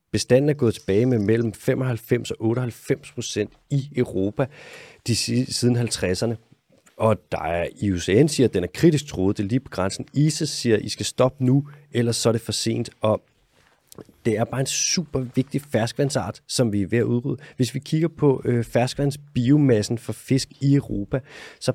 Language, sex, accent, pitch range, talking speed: Danish, male, native, 110-135 Hz, 185 wpm